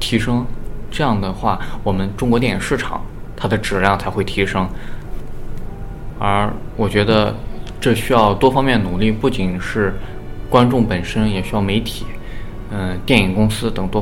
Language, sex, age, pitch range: Chinese, male, 20-39, 100-115 Hz